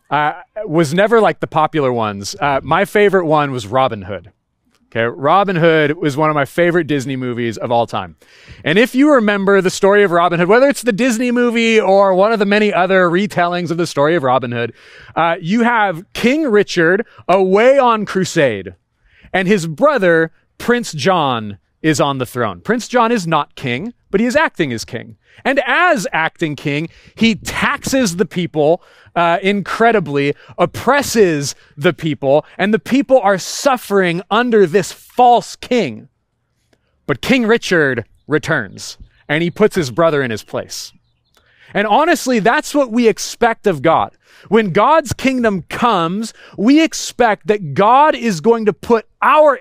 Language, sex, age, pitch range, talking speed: English, male, 30-49, 145-235 Hz, 165 wpm